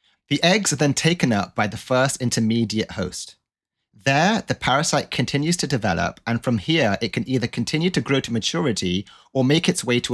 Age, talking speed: 30-49, 195 wpm